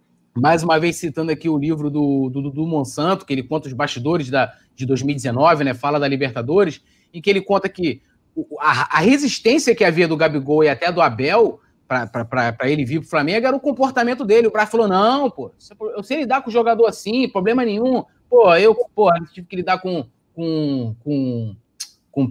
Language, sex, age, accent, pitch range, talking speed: Portuguese, male, 30-49, Brazilian, 165-230 Hz, 205 wpm